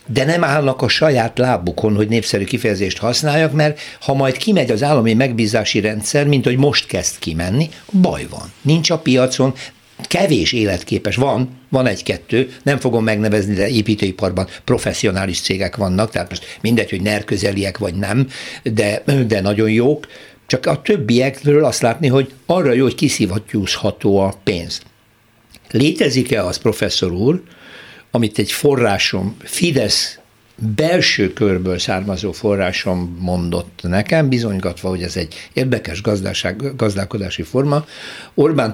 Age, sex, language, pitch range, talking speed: 60-79, male, Hungarian, 100-130 Hz, 135 wpm